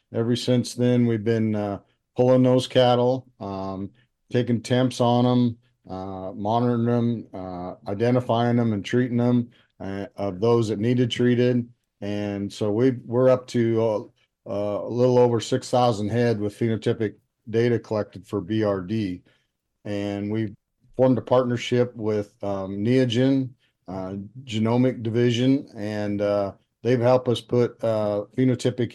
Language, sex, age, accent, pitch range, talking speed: English, male, 50-69, American, 105-120 Hz, 140 wpm